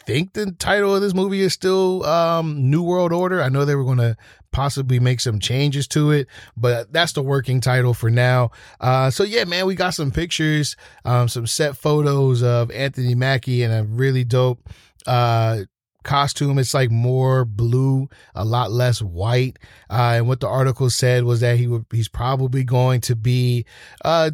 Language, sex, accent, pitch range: English, male, American, 115-140 Hz